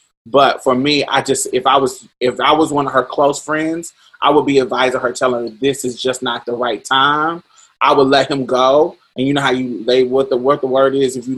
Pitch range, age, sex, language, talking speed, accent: 130-170 Hz, 20-39, male, English, 235 wpm, American